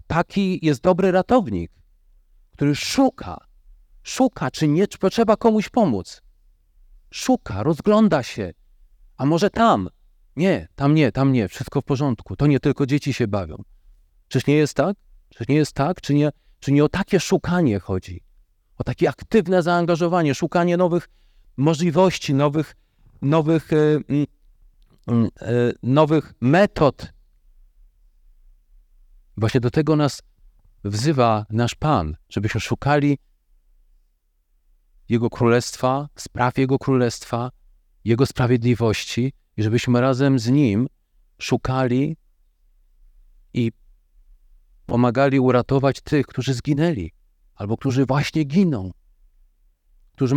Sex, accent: male, native